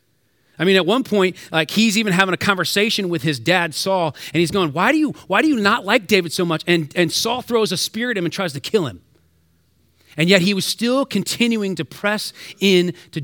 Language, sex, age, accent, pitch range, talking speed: English, male, 30-49, American, 150-195 Hz, 235 wpm